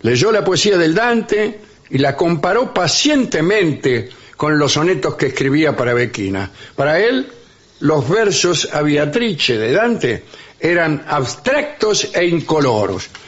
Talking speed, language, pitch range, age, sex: 125 wpm, English, 130-180 Hz, 60-79, male